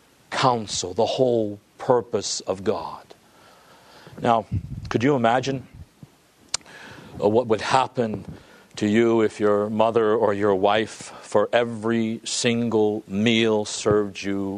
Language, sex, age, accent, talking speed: English, male, 50-69, American, 105 wpm